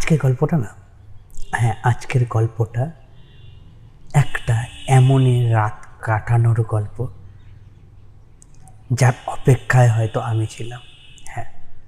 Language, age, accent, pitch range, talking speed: Bengali, 30-49, native, 120-140 Hz, 85 wpm